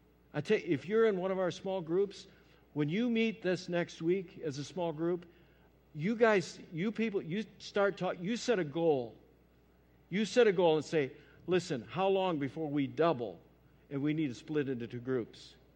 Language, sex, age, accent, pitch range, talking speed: English, male, 60-79, American, 150-205 Hz, 200 wpm